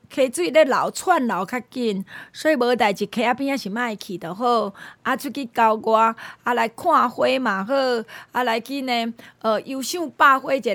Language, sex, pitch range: Chinese, female, 220-290 Hz